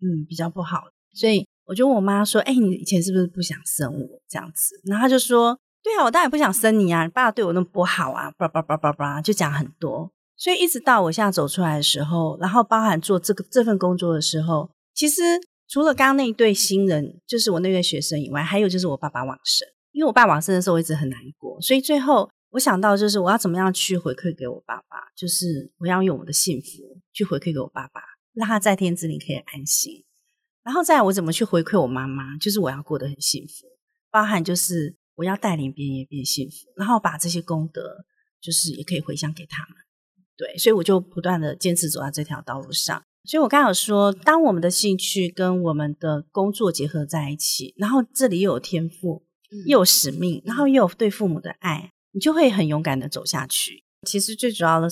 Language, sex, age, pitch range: Chinese, female, 30-49, 160-215 Hz